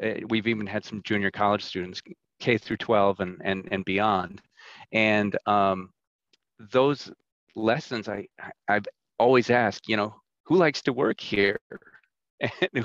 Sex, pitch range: male, 100-125 Hz